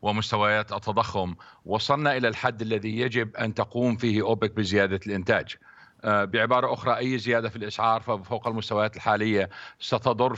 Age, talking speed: 50-69, 135 wpm